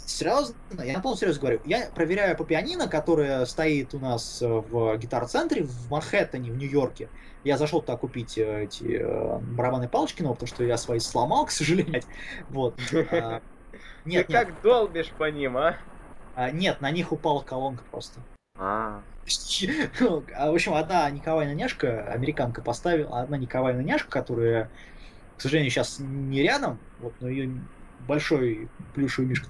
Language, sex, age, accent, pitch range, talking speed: Russian, male, 20-39, native, 120-155 Hz, 140 wpm